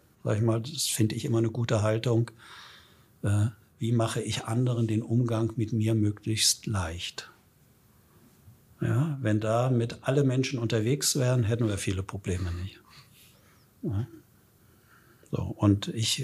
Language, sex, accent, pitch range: German, male, German, 115-130 Hz